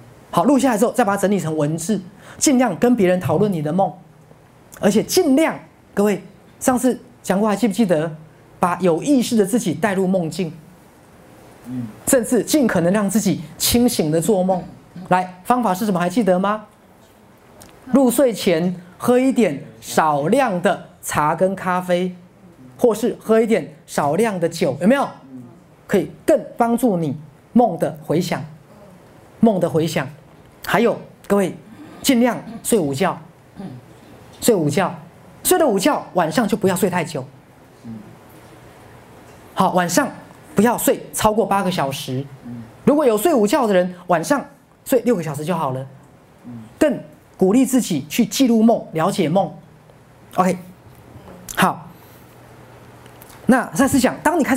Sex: male